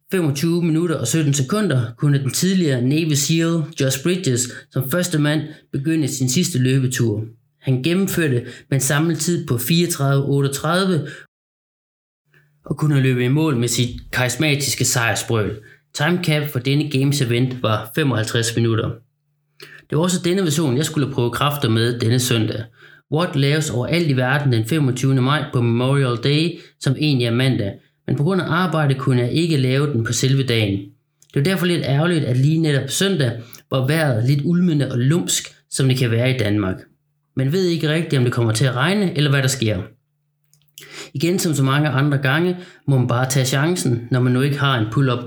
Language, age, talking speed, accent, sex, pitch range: Danish, 30-49, 180 wpm, native, male, 125-160 Hz